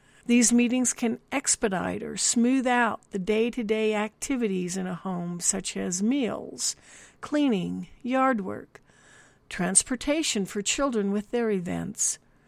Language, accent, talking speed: English, American, 120 wpm